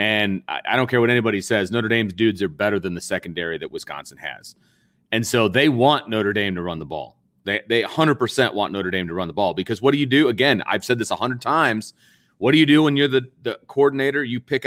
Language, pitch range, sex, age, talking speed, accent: English, 100-125 Hz, male, 30-49, 245 wpm, American